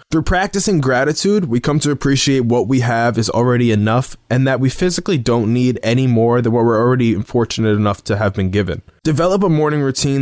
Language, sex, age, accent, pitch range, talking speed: English, male, 20-39, American, 115-145 Hz, 205 wpm